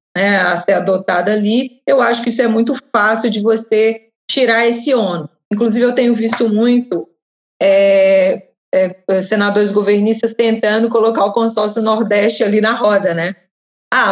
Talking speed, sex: 145 wpm, female